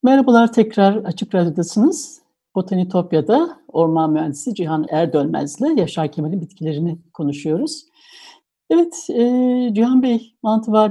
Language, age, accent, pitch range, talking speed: Turkish, 60-79, native, 165-235 Hz, 100 wpm